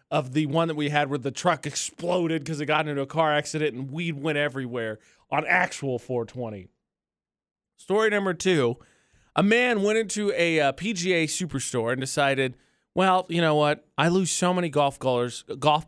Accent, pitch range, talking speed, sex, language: American, 145-215 Hz, 180 wpm, male, English